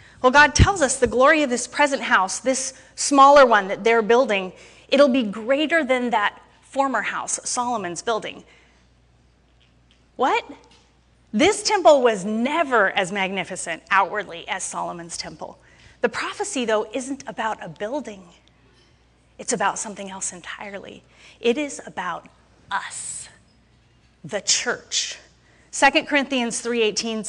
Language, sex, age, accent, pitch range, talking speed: English, female, 30-49, American, 200-275 Hz, 125 wpm